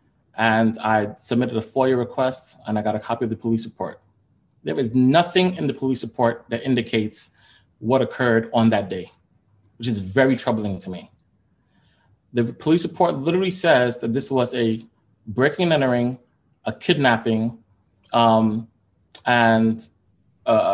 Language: English